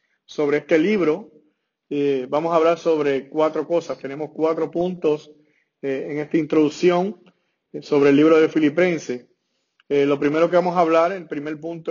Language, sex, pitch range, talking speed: English, male, 150-175 Hz, 165 wpm